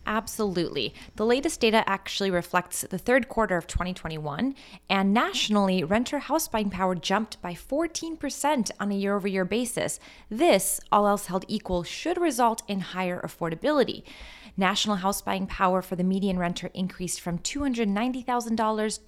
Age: 20-39